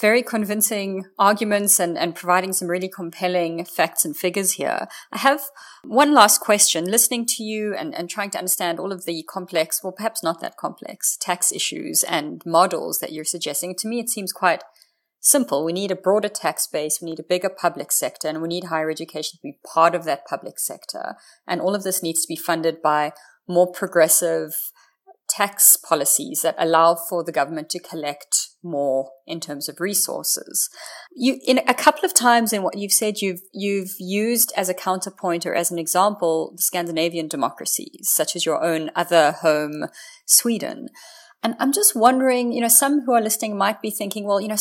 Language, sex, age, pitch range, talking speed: English, female, 30-49, 165-220 Hz, 190 wpm